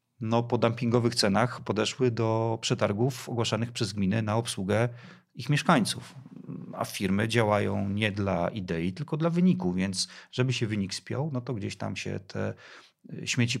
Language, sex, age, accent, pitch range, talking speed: Polish, male, 40-59, native, 100-120 Hz, 155 wpm